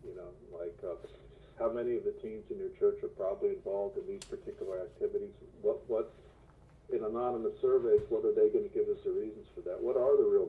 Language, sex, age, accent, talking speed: English, male, 50-69, American, 225 wpm